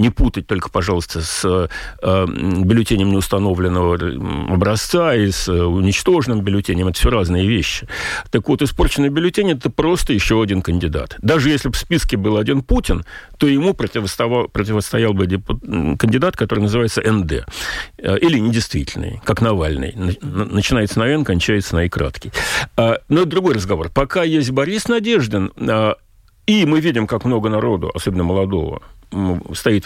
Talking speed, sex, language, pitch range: 135 wpm, male, Russian, 90-130 Hz